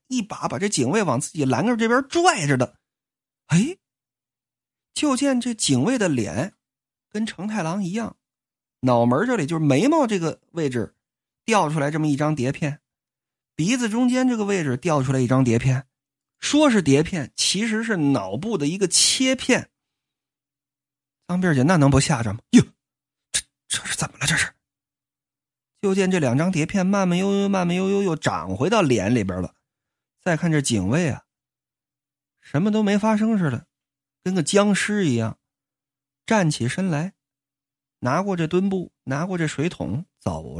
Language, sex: Chinese, male